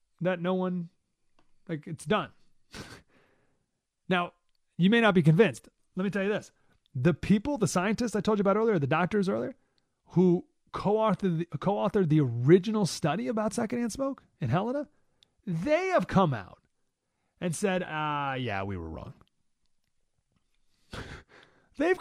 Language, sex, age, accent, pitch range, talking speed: English, male, 30-49, American, 135-190 Hz, 140 wpm